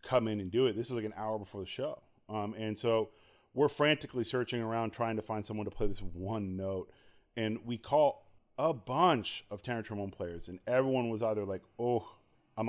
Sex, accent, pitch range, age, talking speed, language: male, American, 100-120 Hz, 30-49, 215 wpm, English